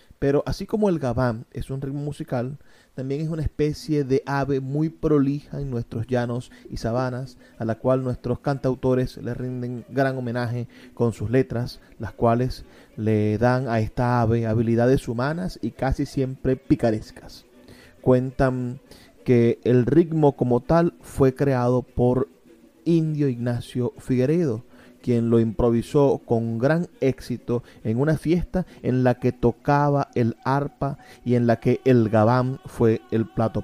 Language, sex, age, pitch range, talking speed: Spanish, male, 30-49, 120-145 Hz, 150 wpm